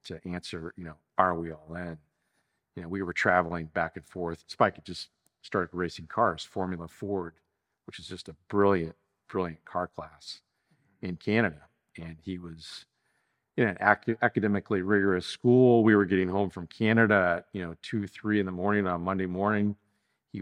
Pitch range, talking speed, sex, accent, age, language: 90-110 Hz, 180 wpm, male, American, 50-69, English